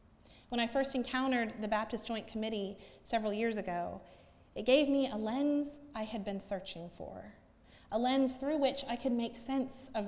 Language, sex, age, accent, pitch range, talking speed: English, female, 30-49, American, 195-245 Hz, 180 wpm